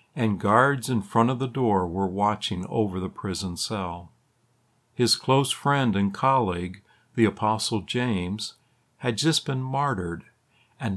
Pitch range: 105-140 Hz